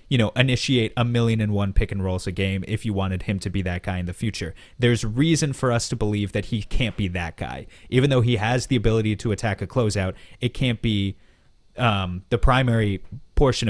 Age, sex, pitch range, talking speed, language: 30-49, male, 100-125 Hz, 230 wpm, English